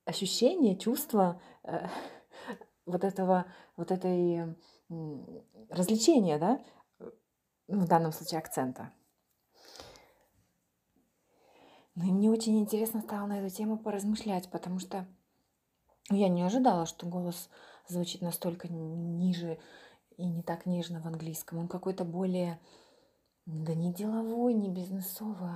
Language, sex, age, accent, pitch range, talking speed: Ukrainian, female, 30-49, native, 170-225 Hz, 110 wpm